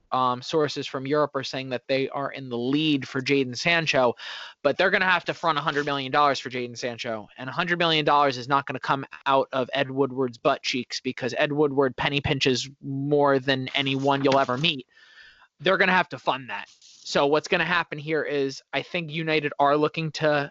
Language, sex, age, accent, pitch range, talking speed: English, male, 20-39, American, 140-165 Hz, 215 wpm